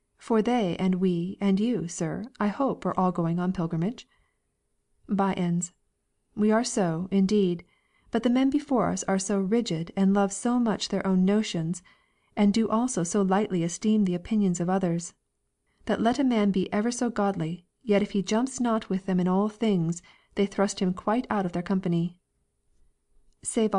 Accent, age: American, 40-59